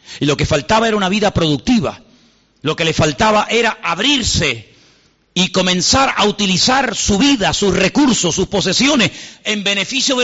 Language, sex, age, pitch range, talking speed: Spanish, male, 50-69, 170-255 Hz, 160 wpm